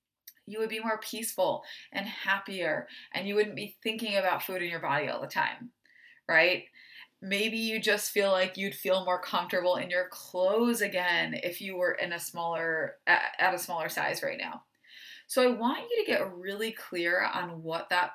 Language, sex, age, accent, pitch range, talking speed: English, female, 20-39, American, 180-240 Hz, 190 wpm